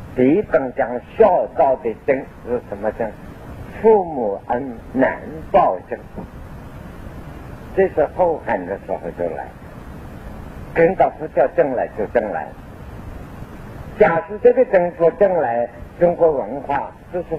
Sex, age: male, 50-69